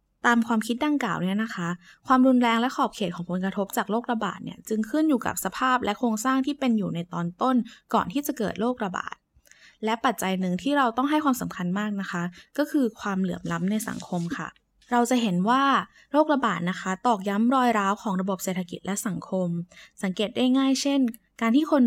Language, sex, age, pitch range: Thai, female, 20-39, 185-245 Hz